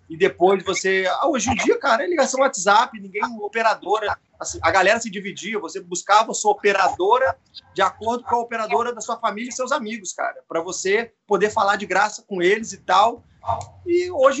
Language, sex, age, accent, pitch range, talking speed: Portuguese, male, 30-49, Brazilian, 170-235 Hz, 190 wpm